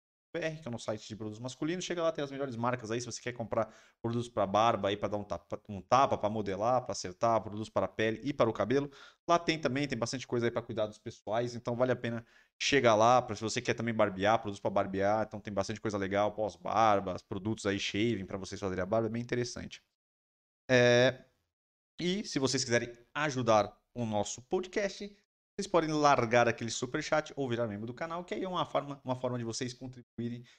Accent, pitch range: Brazilian, 105-140 Hz